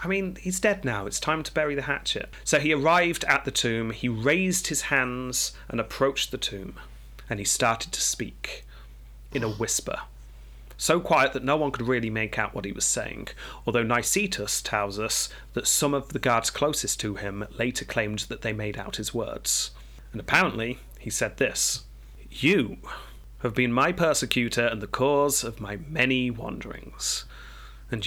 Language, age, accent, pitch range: English, 30-49, British, 105-145 Hz